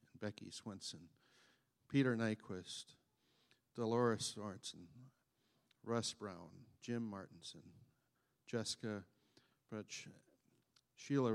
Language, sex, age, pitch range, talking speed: English, male, 60-79, 105-125 Hz, 70 wpm